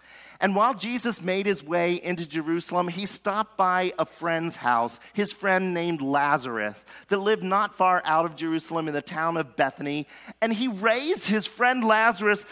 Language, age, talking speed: English, 40-59, 175 wpm